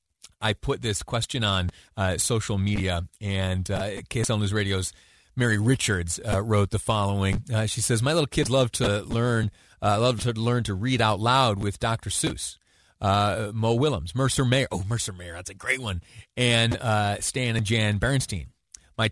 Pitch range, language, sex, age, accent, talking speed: 100-120 Hz, English, male, 30-49, American, 180 wpm